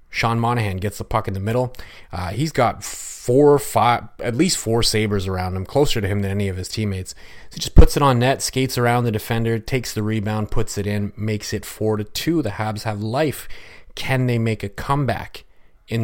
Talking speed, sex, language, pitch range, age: 225 wpm, male, English, 100-120 Hz, 30-49